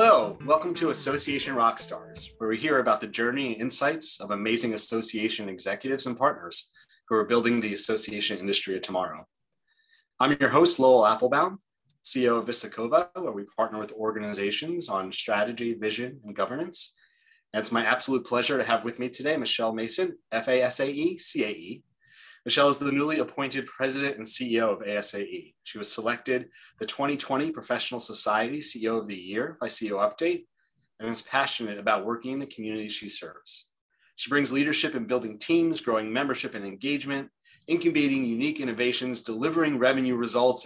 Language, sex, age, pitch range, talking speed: English, male, 30-49, 110-145 Hz, 160 wpm